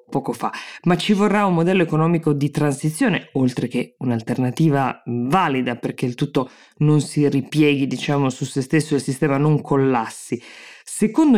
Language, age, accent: Italian, 20-39, native